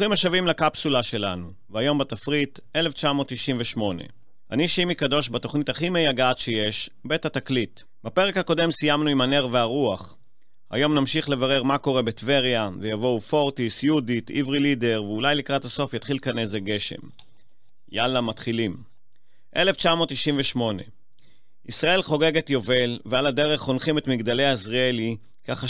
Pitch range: 110-140 Hz